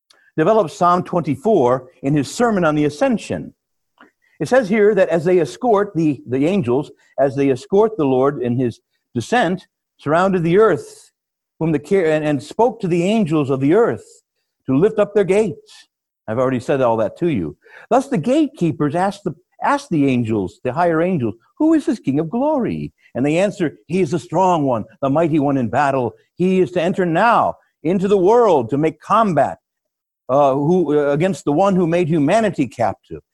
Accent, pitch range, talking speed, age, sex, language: American, 135-195 Hz, 180 wpm, 60-79, male, English